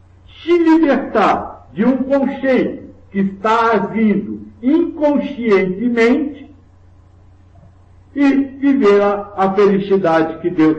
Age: 60-79